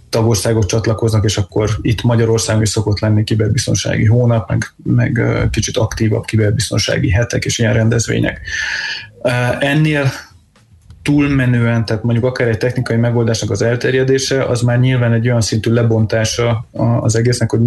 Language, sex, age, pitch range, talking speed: Hungarian, male, 20-39, 110-120 Hz, 130 wpm